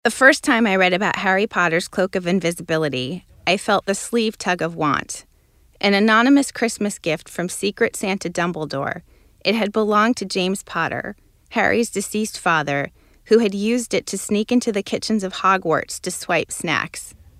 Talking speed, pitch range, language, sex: 170 wpm, 170-230 Hz, English, female